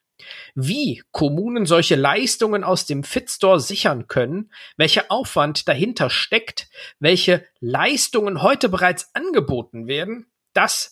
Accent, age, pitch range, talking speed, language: German, 50-69, 140-200 Hz, 110 wpm, German